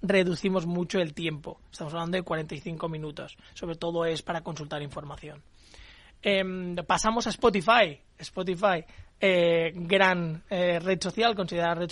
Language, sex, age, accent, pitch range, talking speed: Spanish, male, 20-39, Spanish, 170-200 Hz, 135 wpm